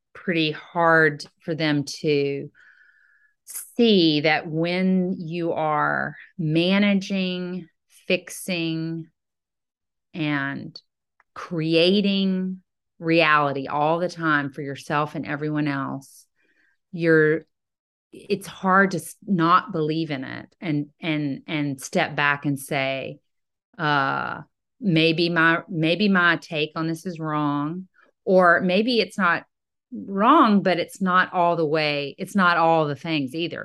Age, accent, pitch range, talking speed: 40-59, American, 155-190 Hz, 115 wpm